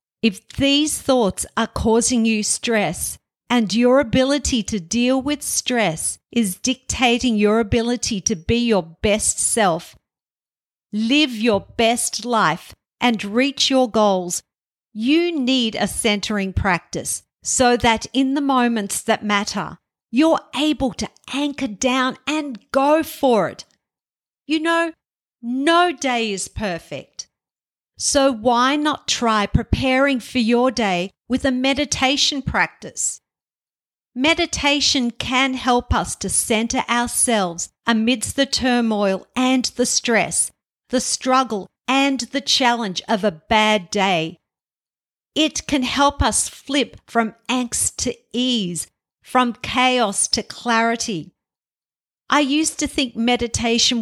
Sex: female